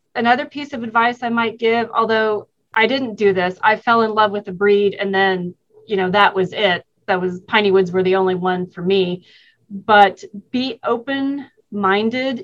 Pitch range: 200-230 Hz